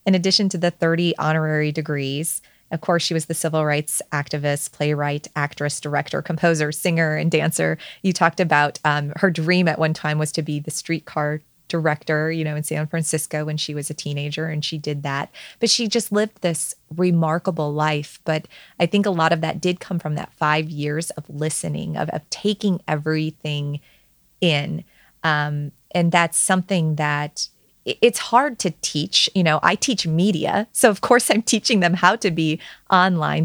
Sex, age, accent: female, 30-49, American